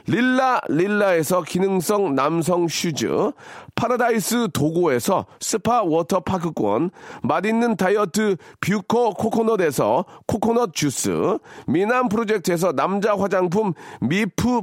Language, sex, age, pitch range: Korean, male, 40-59, 165-230 Hz